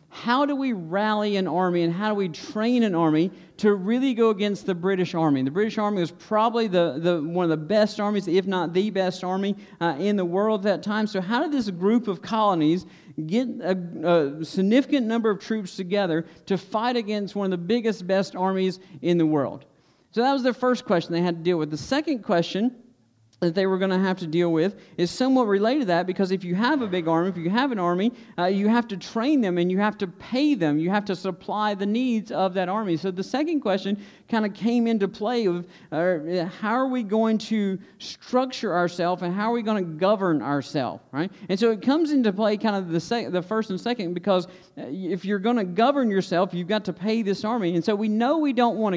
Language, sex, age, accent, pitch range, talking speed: English, male, 50-69, American, 175-225 Hz, 235 wpm